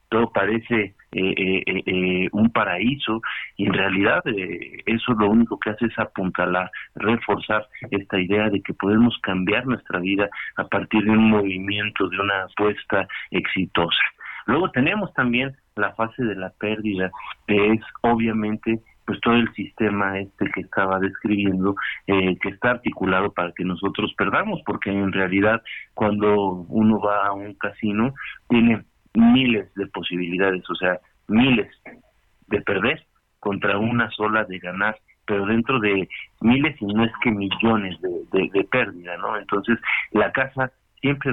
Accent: Mexican